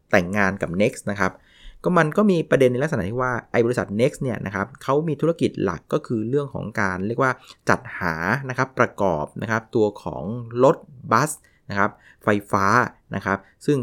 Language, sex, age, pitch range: Thai, male, 20-39, 105-130 Hz